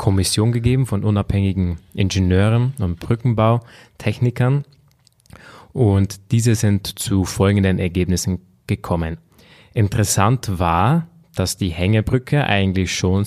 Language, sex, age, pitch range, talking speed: German, male, 30-49, 95-120 Hz, 95 wpm